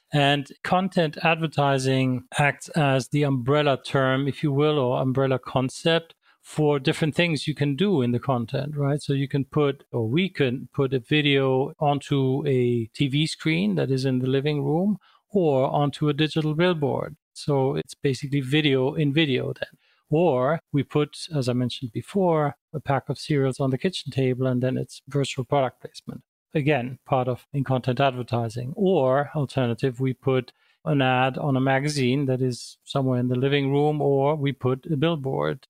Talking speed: 175 wpm